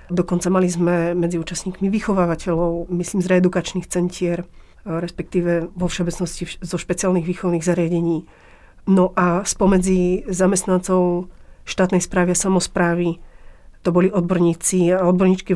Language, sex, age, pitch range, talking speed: Slovak, female, 40-59, 175-195 Hz, 115 wpm